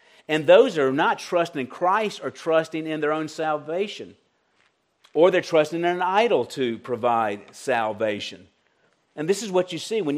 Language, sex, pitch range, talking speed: English, male, 130-185 Hz, 170 wpm